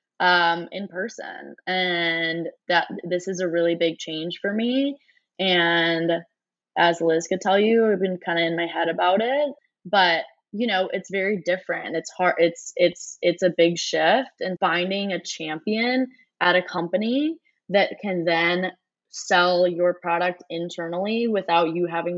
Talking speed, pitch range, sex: 160 wpm, 165-185 Hz, female